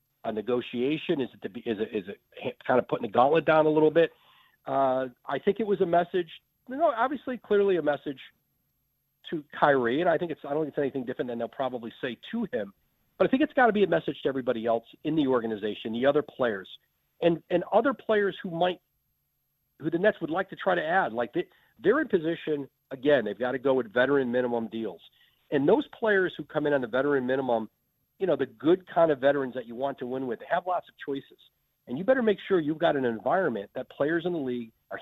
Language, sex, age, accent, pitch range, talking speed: English, male, 40-59, American, 125-170 Hz, 240 wpm